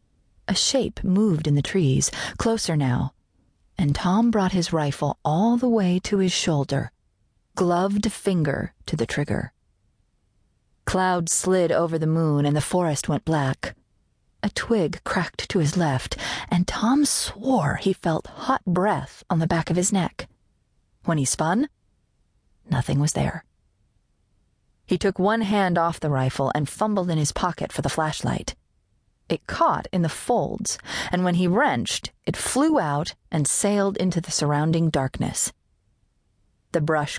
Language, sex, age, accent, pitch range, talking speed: English, female, 40-59, American, 145-195 Hz, 150 wpm